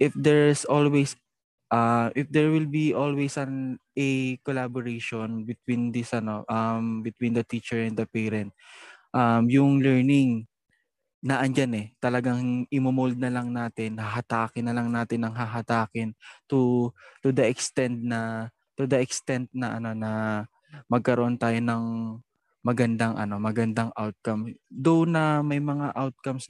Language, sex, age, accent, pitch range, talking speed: Filipino, male, 20-39, native, 115-130 Hz, 140 wpm